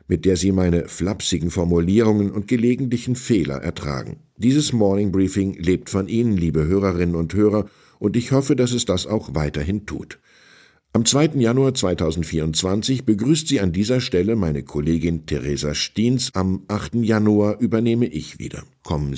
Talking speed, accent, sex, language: 155 wpm, German, male, German